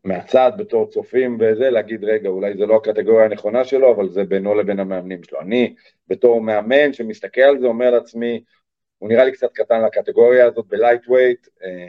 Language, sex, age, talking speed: Hebrew, male, 40-59, 175 wpm